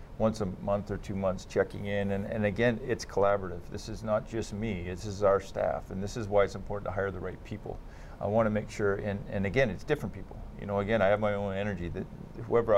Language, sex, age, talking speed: English, male, 40-59, 255 wpm